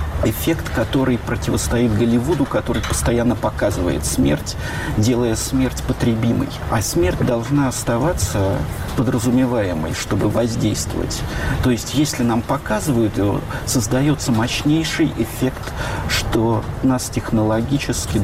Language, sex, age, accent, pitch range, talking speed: Russian, male, 50-69, native, 105-130 Hz, 95 wpm